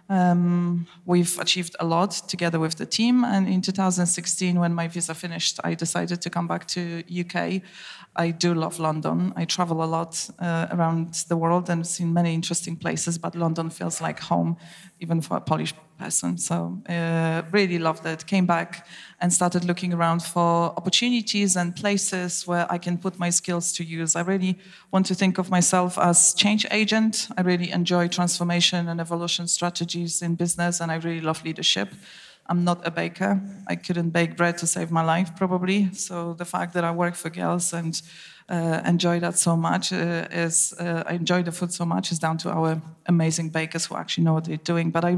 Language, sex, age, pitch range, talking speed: English, female, 20-39, 170-190 Hz, 195 wpm